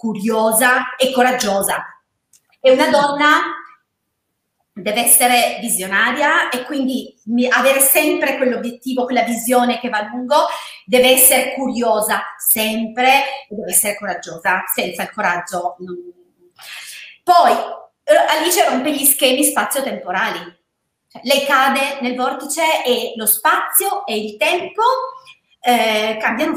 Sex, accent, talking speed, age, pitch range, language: female, native, 110 wpm, 30-49, 220-310 Hz, Italian